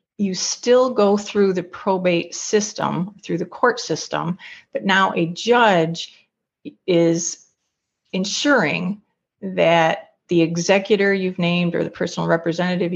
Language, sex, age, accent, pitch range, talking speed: English, female, 40-59, American, 170-210 Hz, 120 wpm